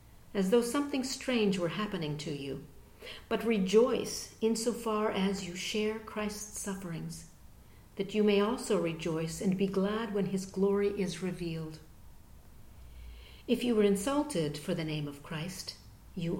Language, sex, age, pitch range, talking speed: English, female, 50-69, 160-215 Hz, 150 wpm